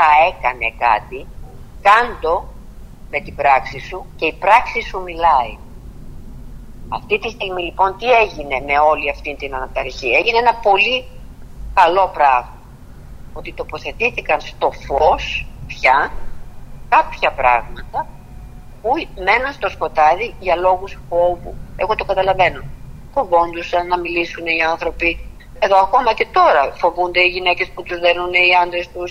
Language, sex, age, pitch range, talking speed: Greek, female, 50-69, 145-190 Hz, 130 wpm